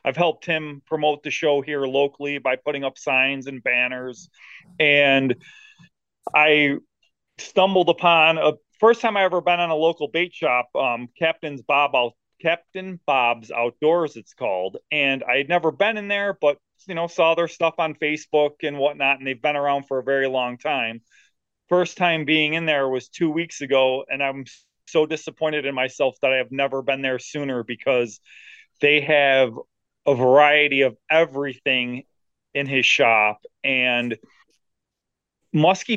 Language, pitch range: English, 135-160 Hz